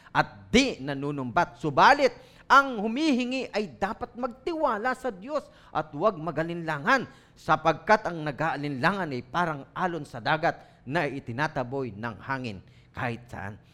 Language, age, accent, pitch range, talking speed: English, 40-59, Filipino, 150-240 Hz, 120 wpm